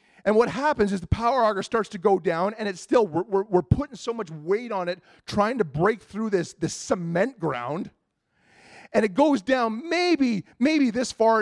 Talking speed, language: 205 wpm, English